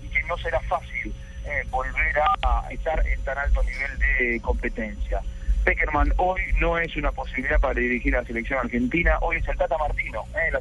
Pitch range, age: 125-165 Hz, 40-59